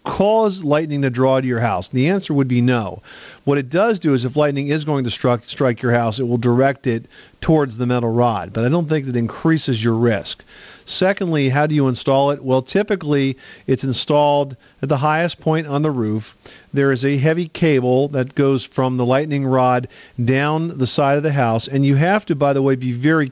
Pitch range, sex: 125-150 Hz, male